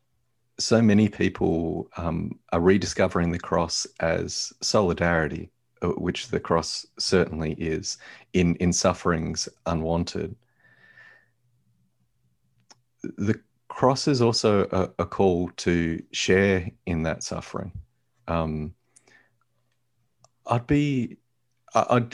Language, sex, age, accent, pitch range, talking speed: English, male, 30-49, Australian, 85-115 Hz, 95 wpm